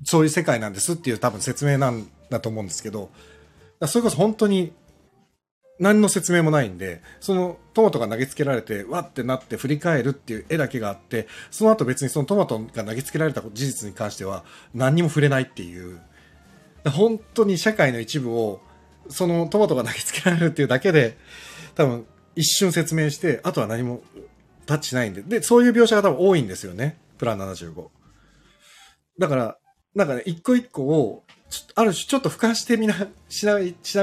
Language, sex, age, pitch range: Japanese, male, 40-59, 105-175 Hz